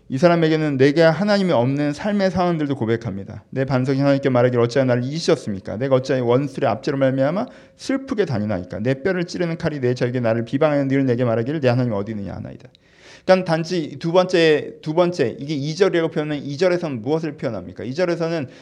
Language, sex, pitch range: Korean, male, 130-165 Hz